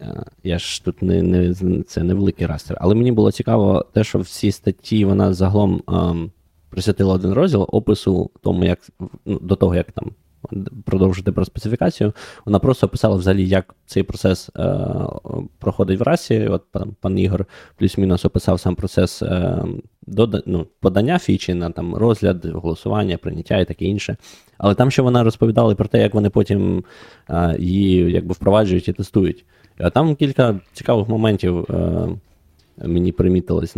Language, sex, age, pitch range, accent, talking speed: Ukrainian, male, 20-39, 90-105 Hz, native, 155 wpm